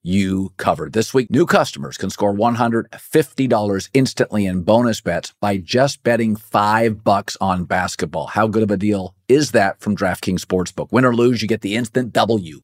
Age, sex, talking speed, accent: 50-69, male, 180 wpm, American